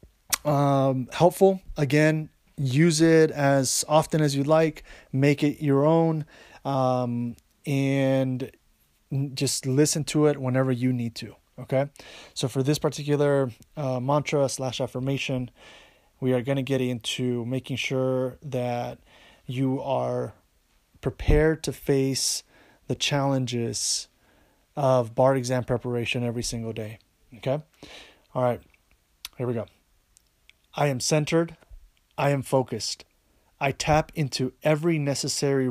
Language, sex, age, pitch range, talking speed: English, male, 20-39, 125-150 Hz, 125 wpm